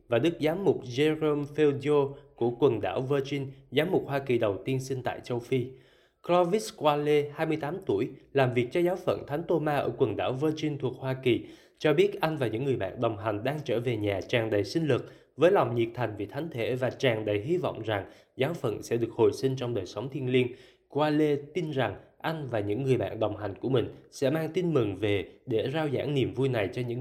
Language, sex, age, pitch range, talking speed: Vietnamese, male, 20-39, 120-155 Hz, 230 wpm